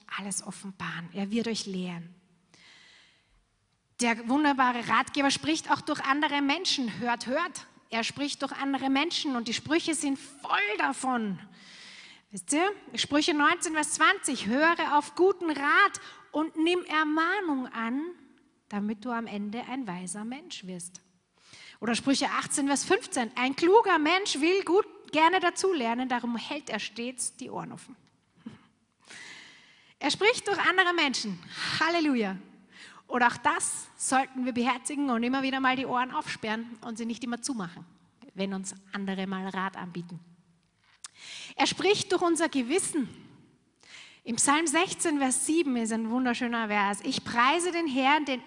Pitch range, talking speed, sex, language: 215-310 Hz, 145 wpm, female, German